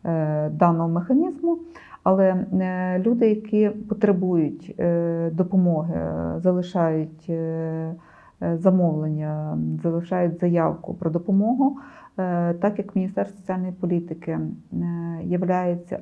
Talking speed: 70 wpm